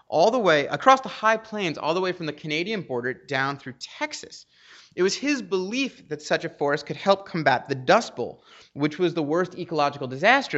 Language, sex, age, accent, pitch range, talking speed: English, male, 30-49, American, 140-195 Hz, 210 wpm